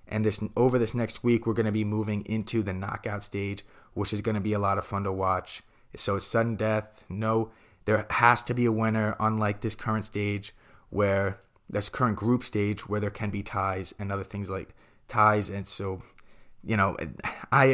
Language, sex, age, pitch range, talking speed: English, male, 20-39, 95-110 Hz, 205 wpm